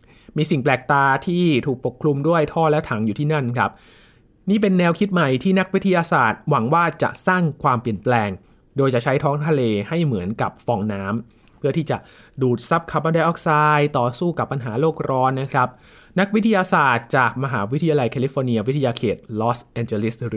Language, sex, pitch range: Thai, male, 115-155 Hz